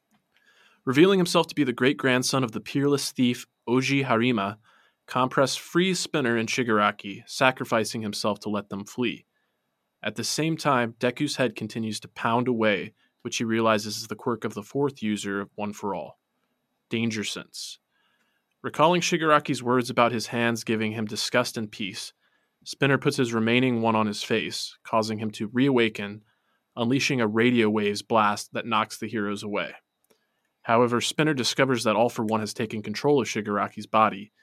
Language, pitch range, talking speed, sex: English, 105-125 Hz, 160 wpm, male